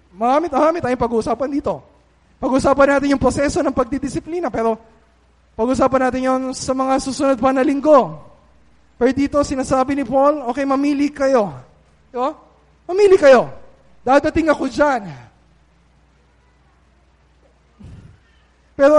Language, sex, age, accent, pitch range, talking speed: Filipino, male, 20-39, native, 245-290 Hz, 115 wpm